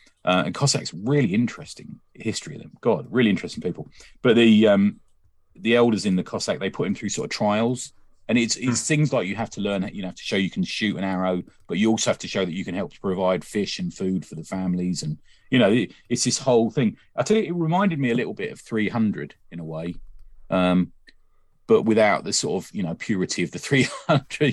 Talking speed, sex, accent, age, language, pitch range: 235 wpm, male, British, 40-59, English, 90-125 Hz